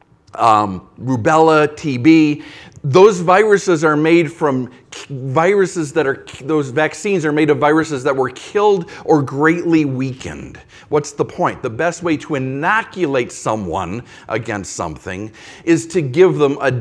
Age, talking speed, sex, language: 40-59, 140 wpm, male, English